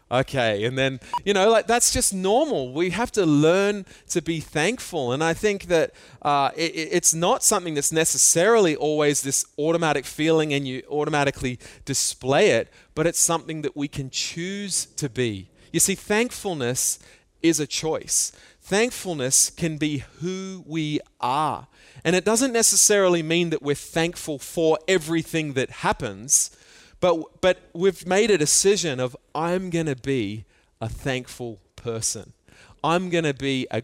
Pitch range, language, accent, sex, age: 135-185 Hz, Japanese, Australian, male, 30-49